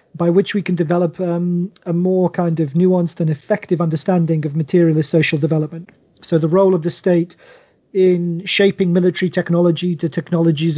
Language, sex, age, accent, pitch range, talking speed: English, male, 40-59, British, 160-180 Hz, 165 wpm